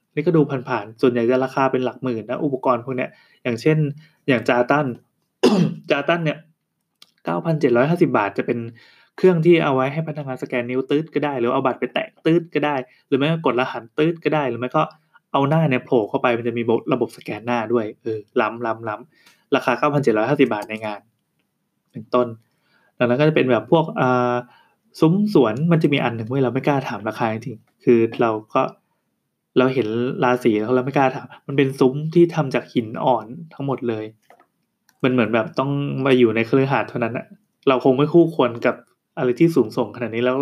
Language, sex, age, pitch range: Thai, male, 20-39, 120-155 Hz